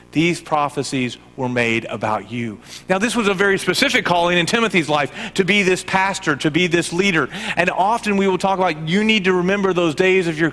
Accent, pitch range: American, 115-175 Hz